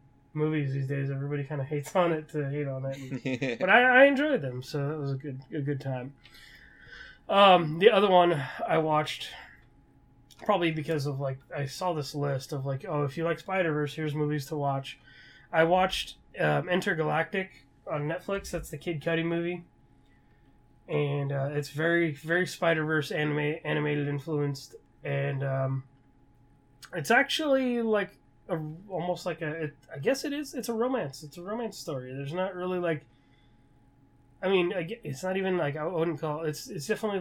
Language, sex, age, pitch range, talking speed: English, male, 20-39, 135-170 Hz, 175 wpm